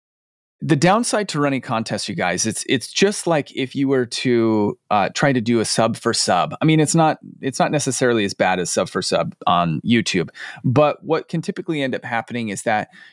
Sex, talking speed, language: male, 215 wpm, English